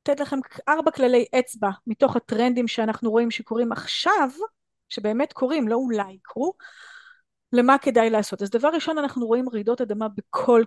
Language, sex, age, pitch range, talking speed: Hebrew, female, 30-49, 215-270 Hz, 150 wpm